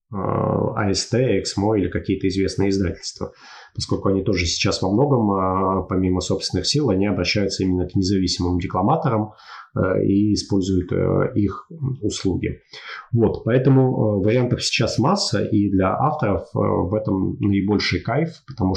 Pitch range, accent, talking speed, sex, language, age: 95-110 Hz, native, 120 wpm, male, Russian, 30-49